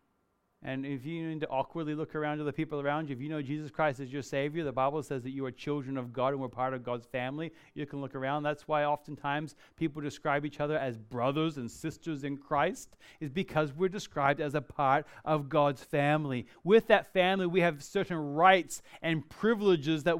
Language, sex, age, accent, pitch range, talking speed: English, male, 30-49, American, 150-200 Hz, 215 wpm